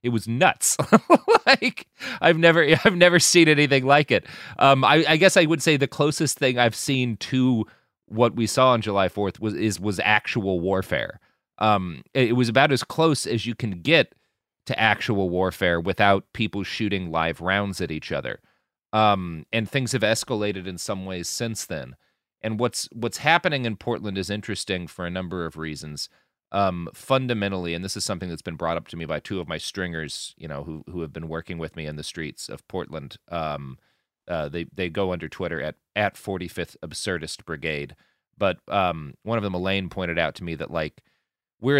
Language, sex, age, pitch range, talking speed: English, male, 30-49, 85-120 Hz, 195 wpm